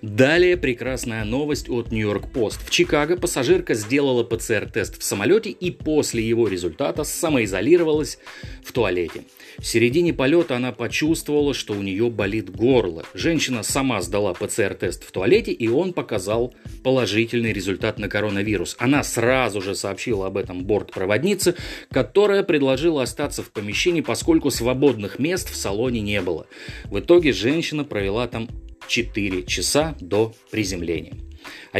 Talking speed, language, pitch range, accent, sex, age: 135 wpm, Russian, 110-150 Hz, native, male, 30-49